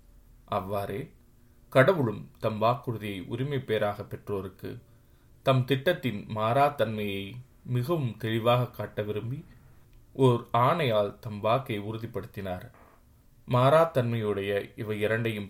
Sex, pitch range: male, 105-125 Hz